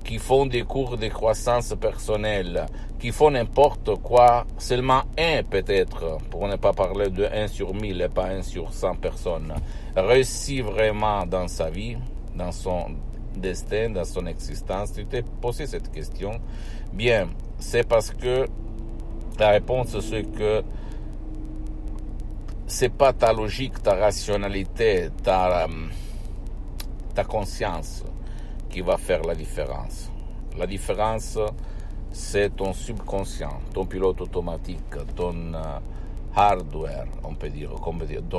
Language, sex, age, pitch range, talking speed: Italian, male, 60-79, 85-110 Hz, 135 wpm